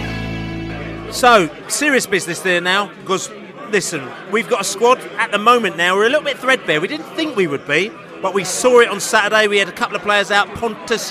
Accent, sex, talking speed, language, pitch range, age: British, male, 215 wpm, English, 175-210 Hz, 40-59